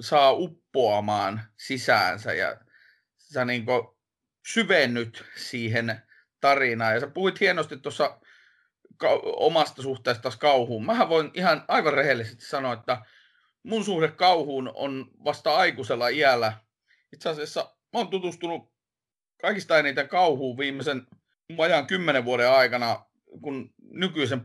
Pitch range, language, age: 115-160 Hz, Finnish, 30-49